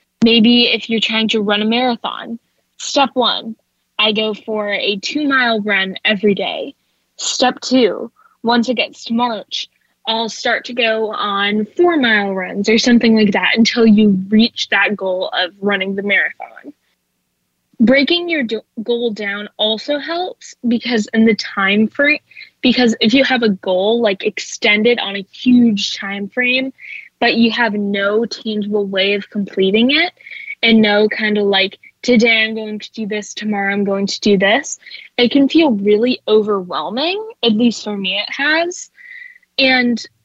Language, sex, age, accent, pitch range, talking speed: English, female, 10-29, American, 205-250 Hz, 165 wpm